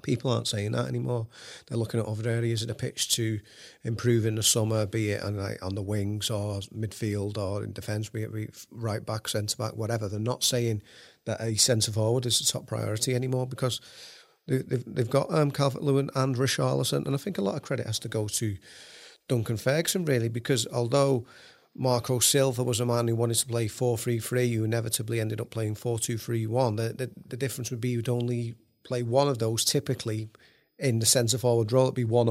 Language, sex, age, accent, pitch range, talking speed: English, male, 40-59, British, 110-130 Hz, 205 wpm